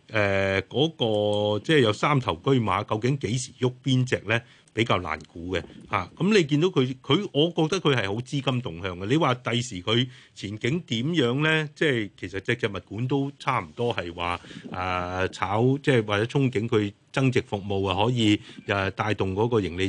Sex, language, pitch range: male, Chinese, 100-135 Hz